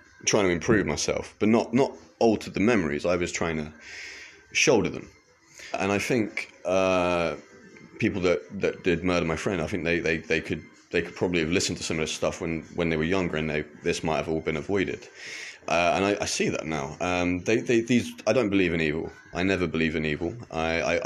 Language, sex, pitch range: English, male, 80-100 Hz